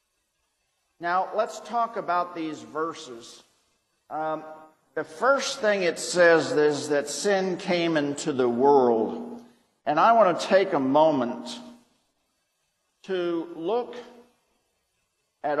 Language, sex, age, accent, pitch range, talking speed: English, male, 50-69, American, 155-205 Hz, 110 wpm